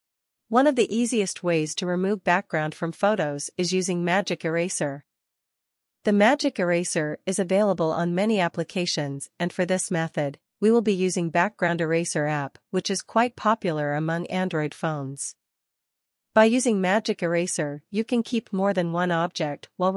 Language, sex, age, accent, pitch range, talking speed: English, female, 40-59, American, 160-200 Hz, 155 wpm